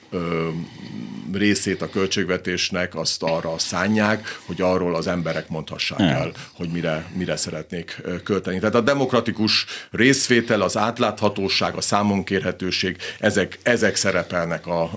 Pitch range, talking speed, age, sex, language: 85-100 Hz, 110 wpm, 50-69, male, Hungarian